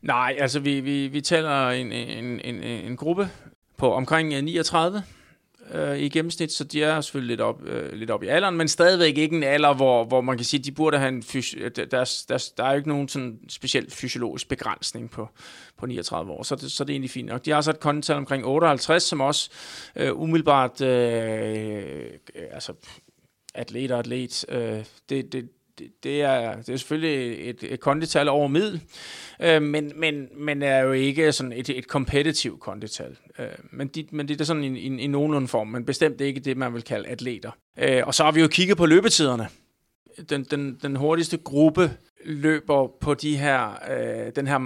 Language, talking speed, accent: Danish, 195 wpm, native